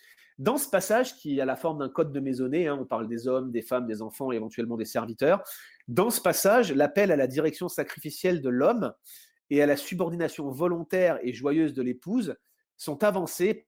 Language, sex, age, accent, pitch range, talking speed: French, male, 30-49, French, 135-185 Hz, 200 wpm